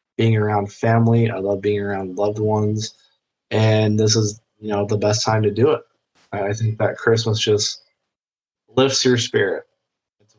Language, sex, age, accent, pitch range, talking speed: English, male, 20-39, American, 110-130 Hz, 170 wpm